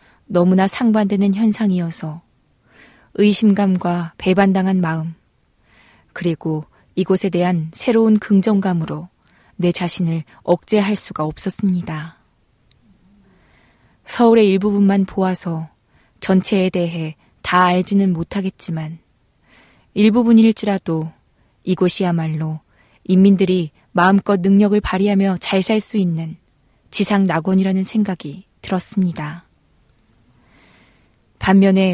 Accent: native